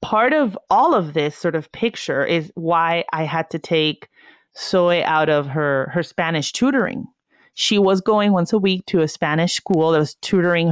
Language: English